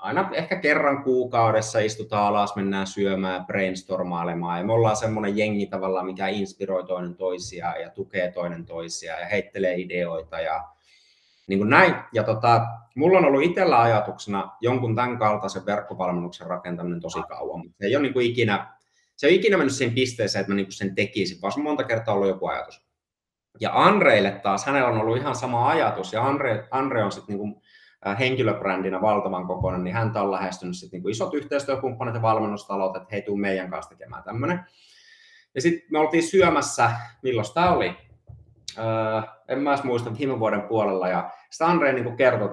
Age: 30-49